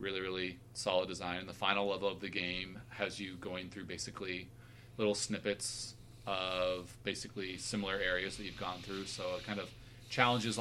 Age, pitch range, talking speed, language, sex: 30-49, 100-115 Hz, 175 wpm, English, male